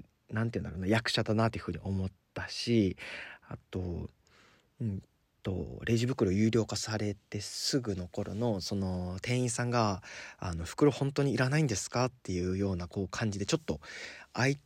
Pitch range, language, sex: 95-120 Hz, Japanese, male